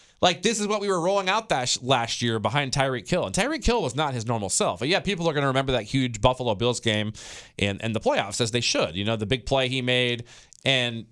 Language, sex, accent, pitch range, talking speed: English, male, American, 105-145 Hz, 260 wpm